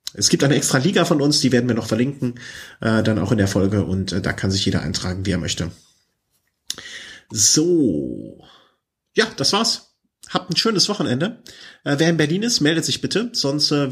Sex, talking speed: male, 200 wpm